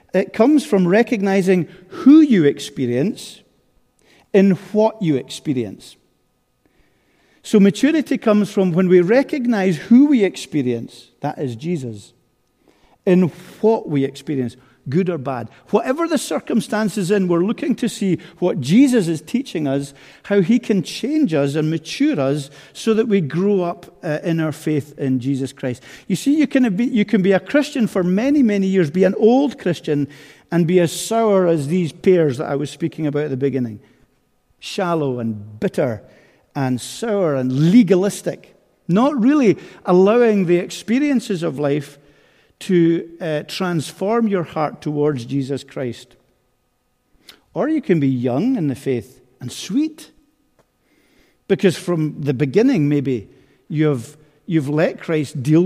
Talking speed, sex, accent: 150 wpm, male, British